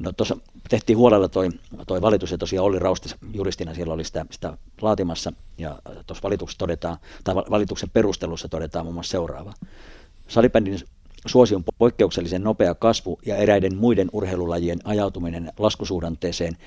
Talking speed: 125 wpm